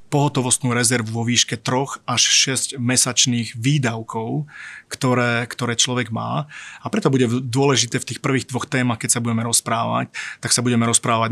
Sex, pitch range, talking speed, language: male, 115-130 Hz, 160 wpm, Slovak